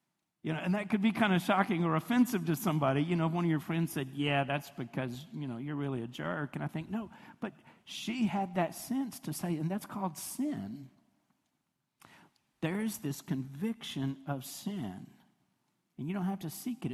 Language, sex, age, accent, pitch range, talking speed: English, male, 50-69, American, 150-195 Hz, 205 wpm